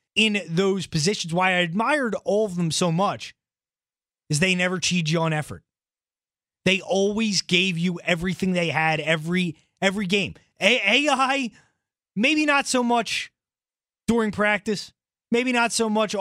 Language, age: English, 30-49